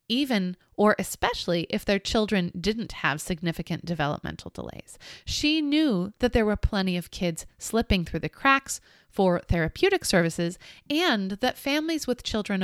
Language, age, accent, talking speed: English, 30-49, American, 145 wpm